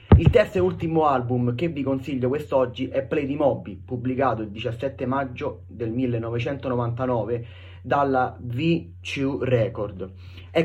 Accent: native